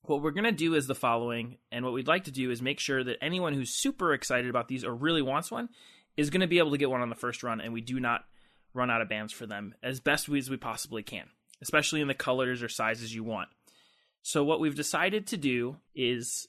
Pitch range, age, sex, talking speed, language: 120-155 Hz, 20-39, male, 260 wpm, English